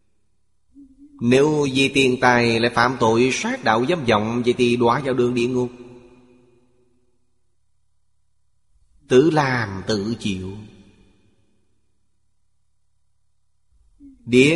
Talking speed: 95 wpm